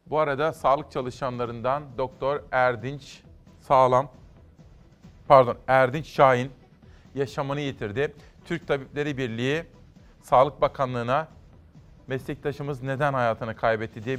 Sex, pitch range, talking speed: male, 130-150 Hz, 95 wpm